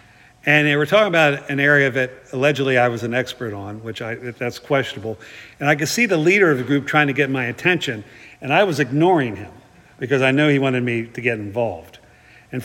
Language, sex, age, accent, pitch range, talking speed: English, male, 50-69, American, 120-145 Hz, 225 wpm